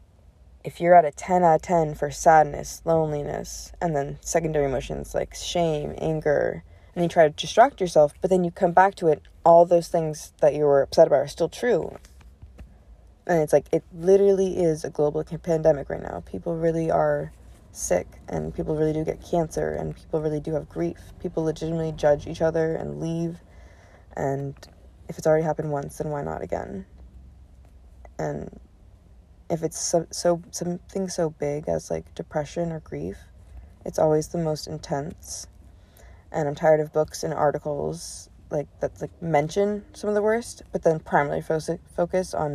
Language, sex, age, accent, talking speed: English, female, 20-39, American, 175 wpm